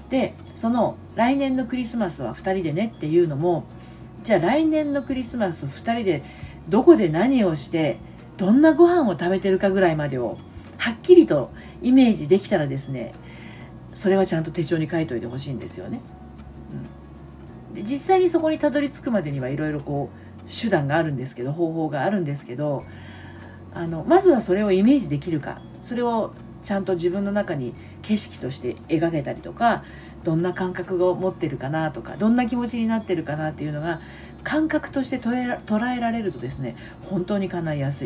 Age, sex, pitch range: 40-59, female, 120-205 Hz